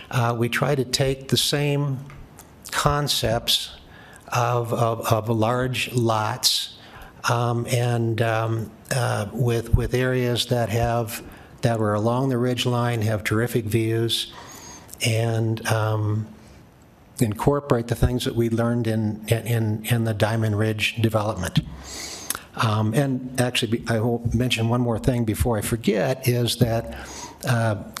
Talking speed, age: 130 wpm, 60-79